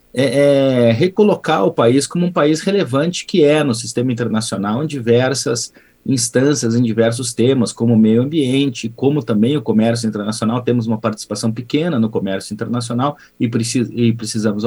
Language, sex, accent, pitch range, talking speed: Portuguese, male, Brazilian, 115-150 Hz, 165 wpm